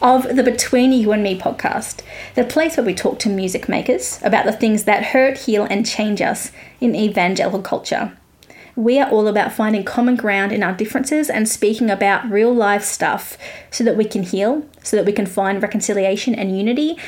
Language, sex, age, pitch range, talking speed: English, female, 20-39, 205-245 Hz, 195 wpm